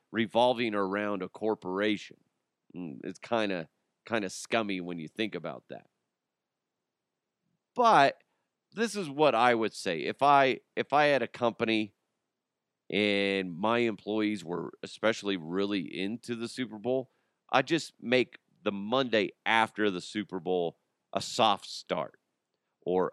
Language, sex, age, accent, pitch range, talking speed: English, male, 30-49, American, 95-120 Hz, 135 wpm